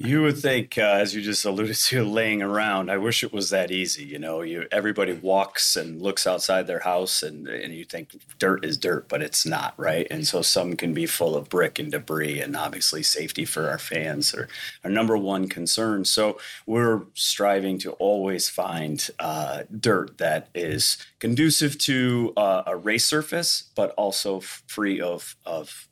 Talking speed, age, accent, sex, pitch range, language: 185 wpm, 30-49, American, male, 90-110 Hz, English